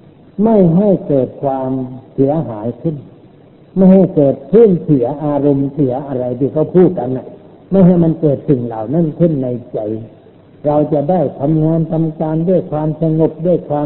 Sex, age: male, 60-79